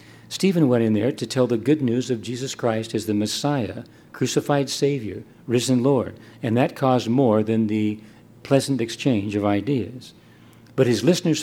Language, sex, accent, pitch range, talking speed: English, male, American, 115-140 Hz, 170 wpm